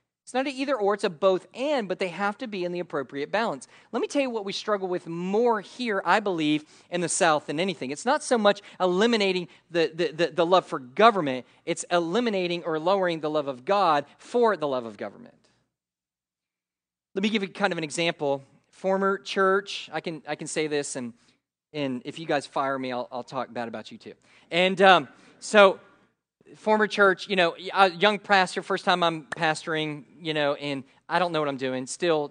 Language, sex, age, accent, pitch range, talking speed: English, male, 40-59, American, 135-190 Hz, 210 wpm